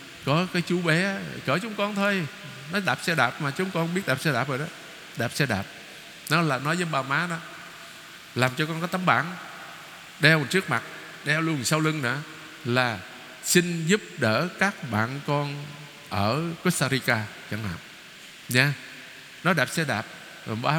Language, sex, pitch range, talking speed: Vietnamese, male, 130-180 Hz, 180 wpm